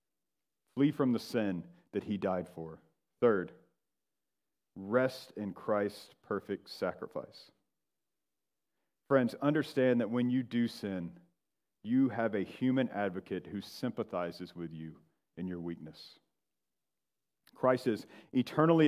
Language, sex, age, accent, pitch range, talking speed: English, male, 40-59, American, 110-150 Hz, 115 wpm